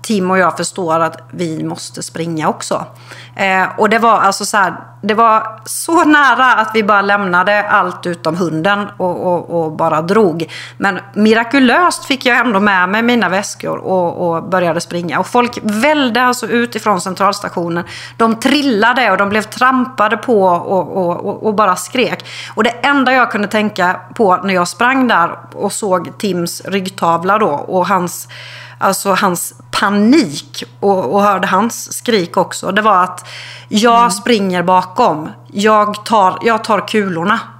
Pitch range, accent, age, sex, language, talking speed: 180-225 Hz, native, 30-49, female, Swedish, 160 wpm